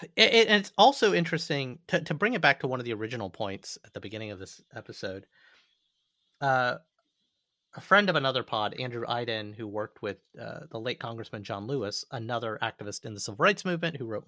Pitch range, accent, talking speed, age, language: 115-160 Hz, American, 200 wpm, 30-49, English